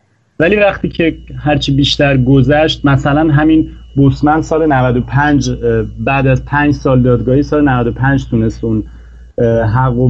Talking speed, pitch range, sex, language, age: 125 wpm, 110-140 Hz, male, Persian, 30-49